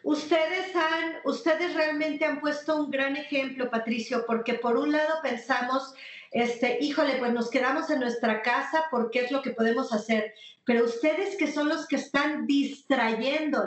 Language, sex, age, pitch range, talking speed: Spanish, female, 40-59, 235-305 Hz, 165 wpm